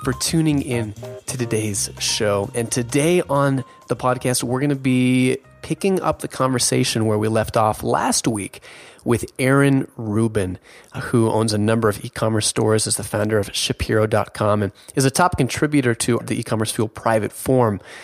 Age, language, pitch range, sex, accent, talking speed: 30-49, English, 110-130 Hz, male, American, 170 wpm